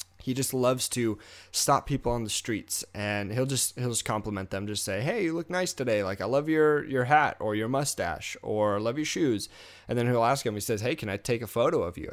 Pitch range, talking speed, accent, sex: 105-130 Hz, 250 wpm, American, male